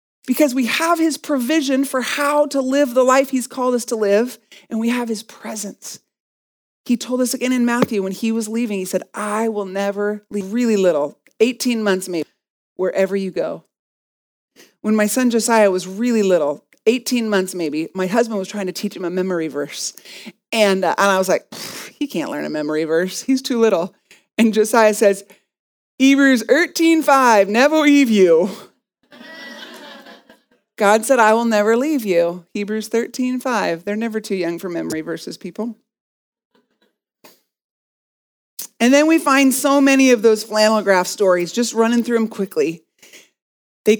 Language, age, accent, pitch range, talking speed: English, 40-59, American, 205-275 Hz, 165 wpm